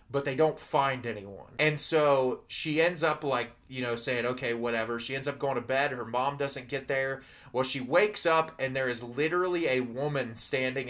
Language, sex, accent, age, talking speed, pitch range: English, male, American, 20-39, 210 wpm, 125-150 Hz